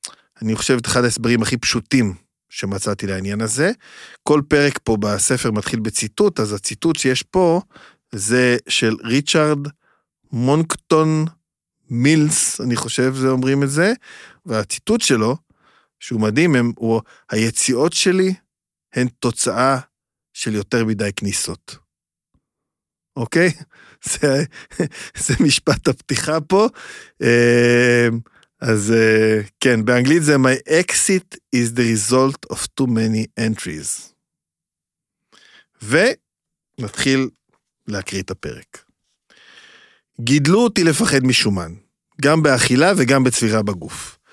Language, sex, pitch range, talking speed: Hebrew, male, 115-150 Hz, 105 wpm